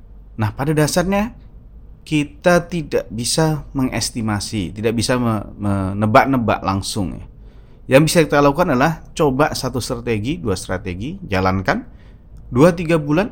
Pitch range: 105-140 Hz